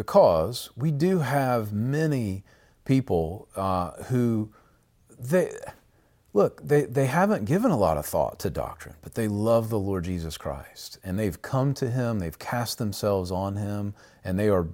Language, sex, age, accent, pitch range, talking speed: English, male, 40-59, American, 85-120 Hz, 165 wpm